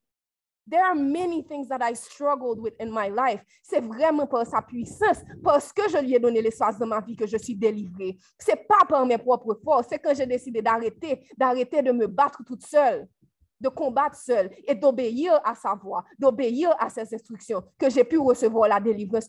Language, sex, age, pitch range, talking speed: French, female, 30-49, 235-295 Hz, 195 wpm